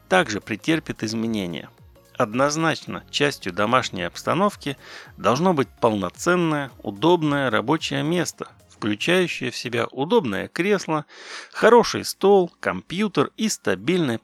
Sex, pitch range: male, 105-175 Hz